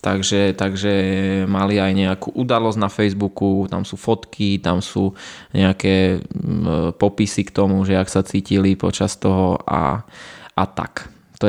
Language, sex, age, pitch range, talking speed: Slovak, male, 20-39, 100-115 Hz, 140 wpm